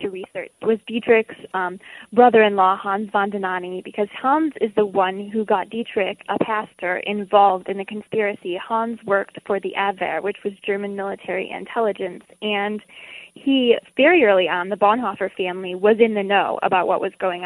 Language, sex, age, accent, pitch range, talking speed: English, female, 10-29, American, 190-215 Hz, 165 wpm